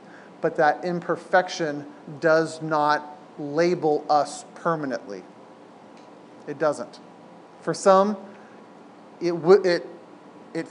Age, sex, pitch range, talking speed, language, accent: 40-59, male, 150-180 Hz, 90 wpm, English, American